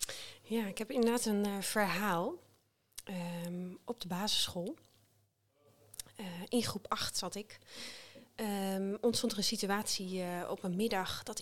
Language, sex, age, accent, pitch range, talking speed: Dutch, female, 30-49, Dutch, 180-220 Hz, 130 wpm